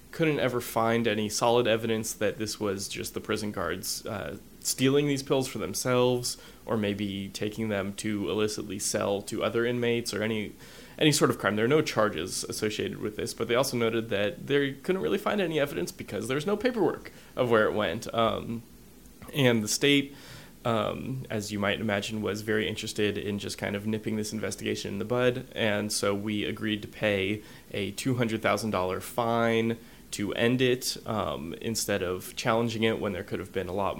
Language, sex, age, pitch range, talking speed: English, male, 20-39, 105-125 Hz, 190 wpm